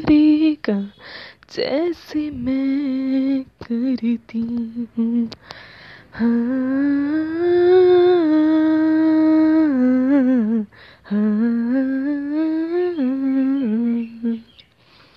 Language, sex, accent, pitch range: Hindi, female, native, 255-320 Hz